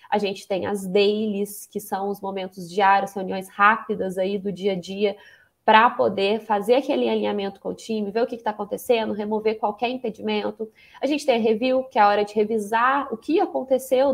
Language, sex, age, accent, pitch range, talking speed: Portuguese, female, 20-39, Brazilian, 200-230 Hz, 205 wpm